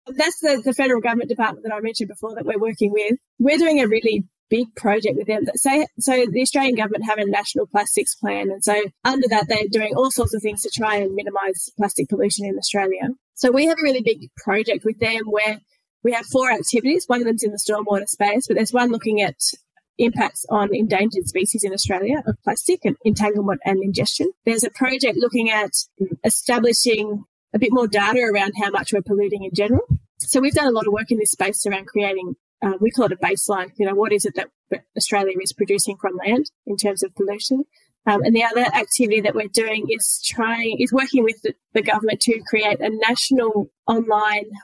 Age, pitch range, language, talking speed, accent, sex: 10-29, 205-245 Hz, English, 215 wpm, Australian, female